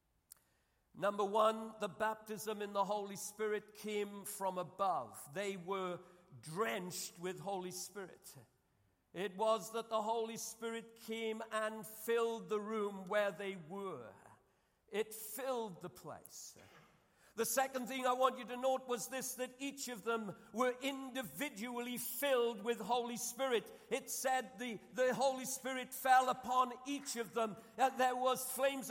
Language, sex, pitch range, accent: English, male, 215-270 Hz, British